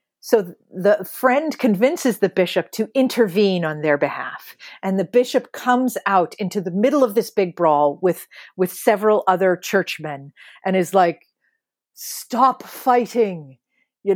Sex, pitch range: female, 180-245 Hz